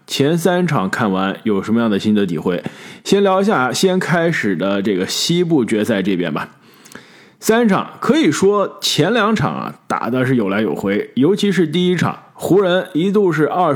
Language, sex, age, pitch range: Chinese, male, 20-39, 115-175 Hz